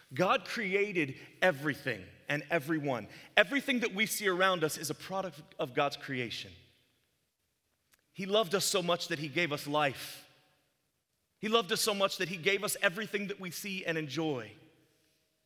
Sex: male